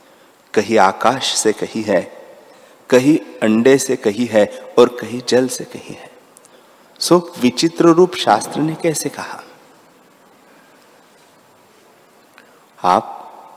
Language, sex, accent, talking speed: Hindi, male, native, 105 wpm